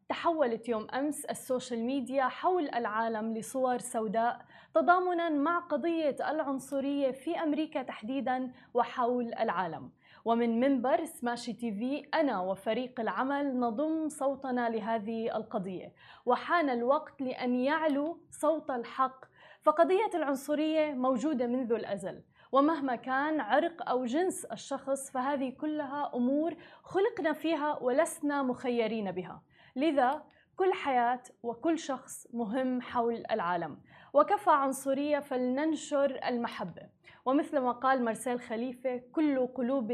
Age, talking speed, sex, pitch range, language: 20-39, 110 wpm, female, 235-300 Hz, Arabic